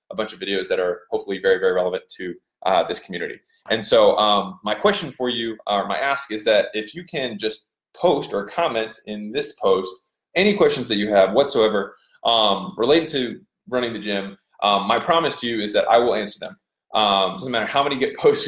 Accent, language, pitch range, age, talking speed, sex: American, English, 100-135 Hz, 20-39, 215 wpm, male